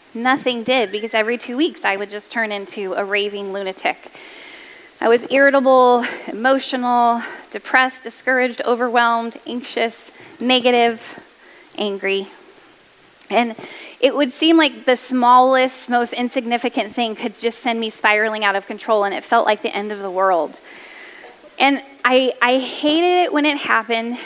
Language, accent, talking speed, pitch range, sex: English, American, 145 wpm, 220-270 Hz, female